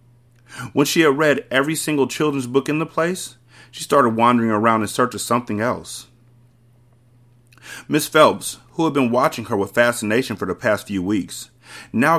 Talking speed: 170 wpm